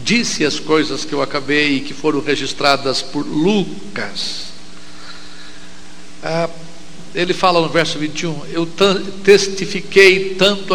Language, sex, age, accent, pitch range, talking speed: Portuguese, male, 60-79, Brazilian, 145-185 Hz, 115 wpm